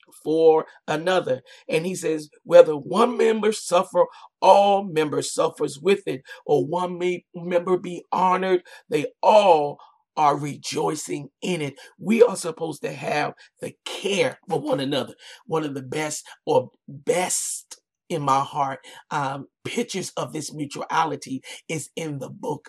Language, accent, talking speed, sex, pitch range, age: English, American, 145 wpm, male, 155-185 Hz, 50-69